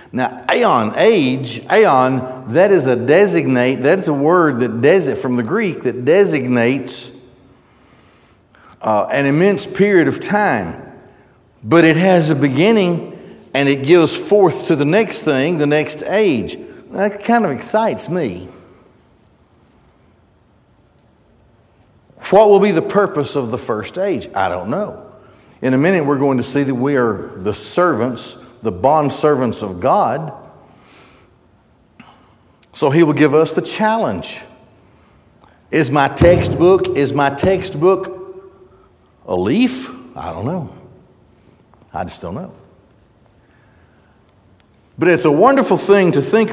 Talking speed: 135 wpm